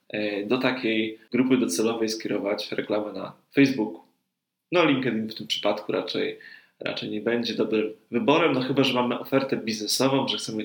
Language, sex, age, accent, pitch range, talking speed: Polish, male, 20-39, native, 115-140 Hz, 150 wpm